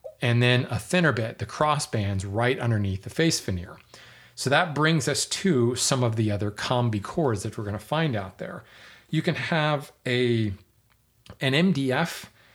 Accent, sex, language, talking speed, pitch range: American, male, English, 170 wpm, 110-135 Hz